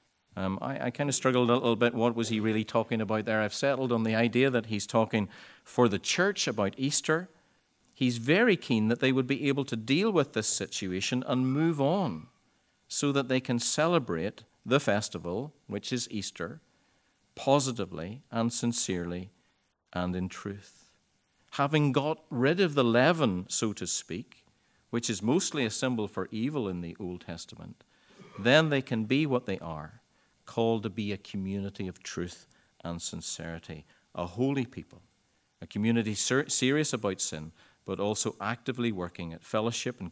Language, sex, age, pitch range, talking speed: English, male, 50-69, 90-125 Hz, 165 wpm